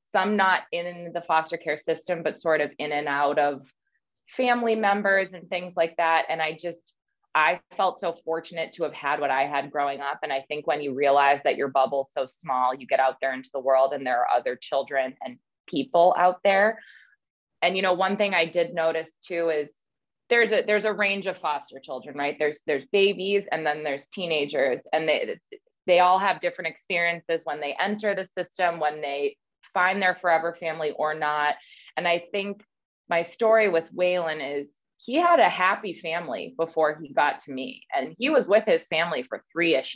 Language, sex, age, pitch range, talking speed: English, female, 20-39, 150-185 Hz, 200 wpm